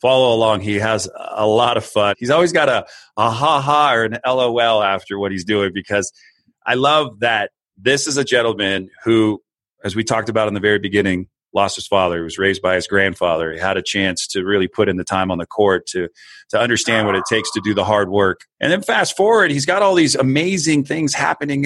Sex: male